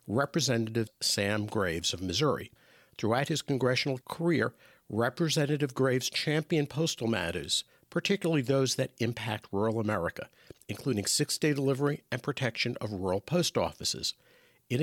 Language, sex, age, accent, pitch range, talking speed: English, male, 50-69, American, 110-150 Hz, 120 wpm